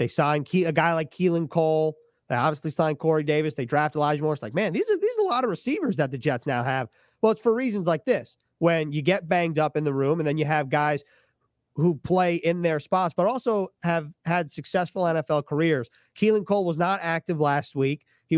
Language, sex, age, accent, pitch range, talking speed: English, male, 30-49, American, 150-180 Hz, 230 wpm